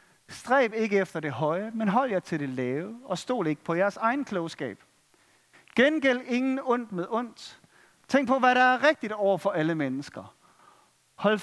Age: 40-59